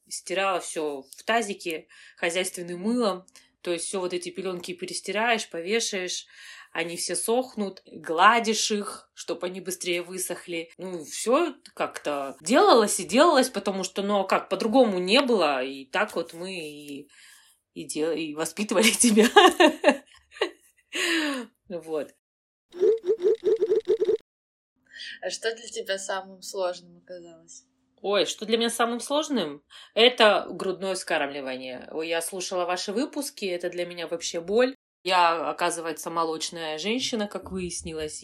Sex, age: female, 20-39